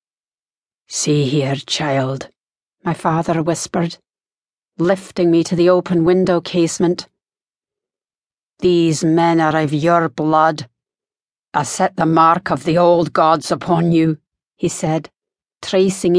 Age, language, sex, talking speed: 40-59, English, female, 120 wpm